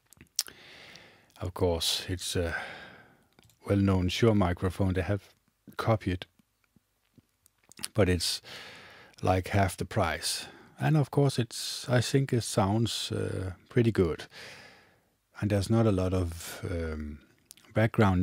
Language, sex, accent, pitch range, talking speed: English, male, Danish, 85-105 Hz, 115 wpm